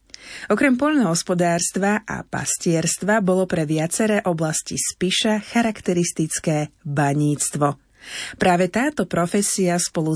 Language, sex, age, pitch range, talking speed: Slovak, female, 30-49, 160-205 Hz, 90 wpm